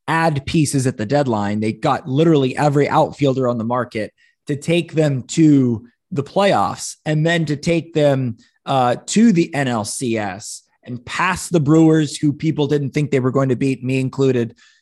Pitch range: 125-180 Hz